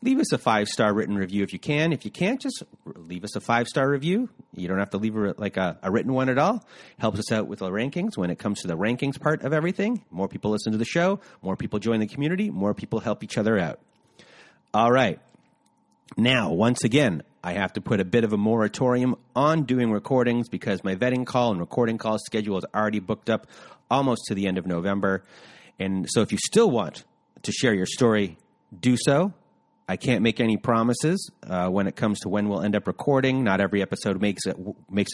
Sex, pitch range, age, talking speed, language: male, 100-130 Hz, 30-49, 225 wpm, English